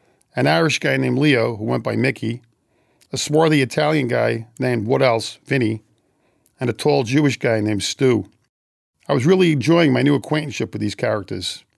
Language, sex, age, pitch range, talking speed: English, male, 50-69, 110-145 Hz, 175 wpm